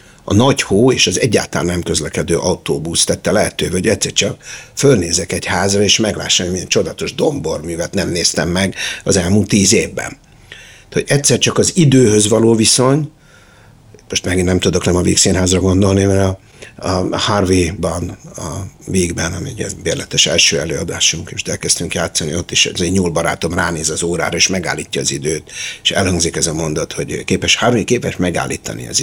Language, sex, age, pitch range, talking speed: Hungarian, male, 60-79, 90-115 Hz, 165 wpm